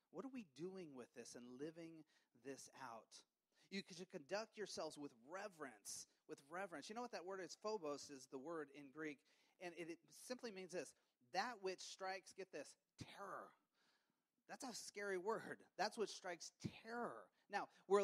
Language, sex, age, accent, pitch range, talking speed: English, male, 30-49, American, 155-210 Hz, 170 wpm